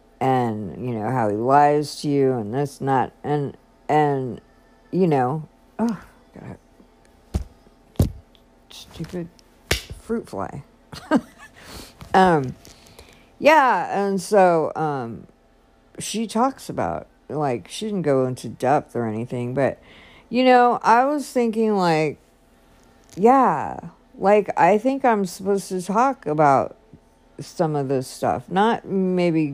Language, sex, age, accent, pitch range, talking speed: English, female, 50-69, American, 130-185 Hz, 120 wpm